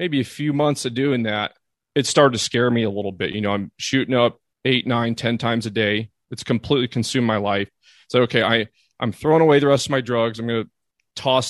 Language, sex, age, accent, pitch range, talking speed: English, male, 30-49, American, 110-125 Hz, 235 wpm